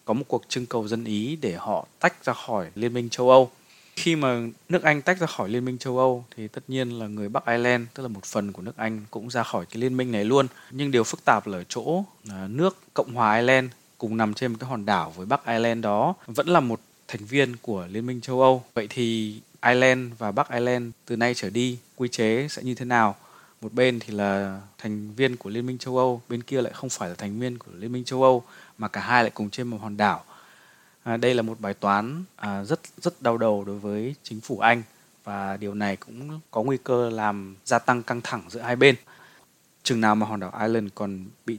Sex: male